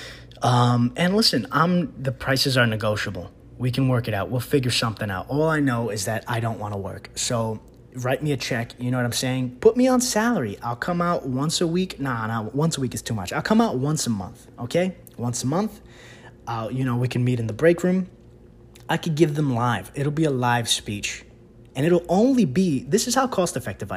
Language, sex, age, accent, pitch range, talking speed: English, male, 20-39, American, 120-155 Hz, 240 wpm